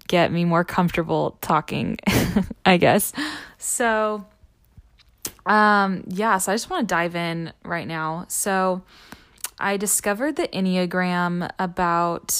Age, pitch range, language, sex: 10-29, 180-205 Hz, English, female